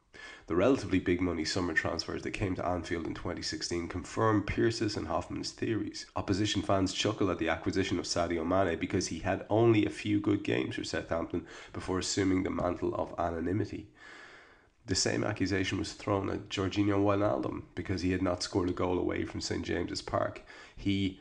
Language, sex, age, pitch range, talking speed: English, male, 30-49, 90-105 Hz, 175 wpm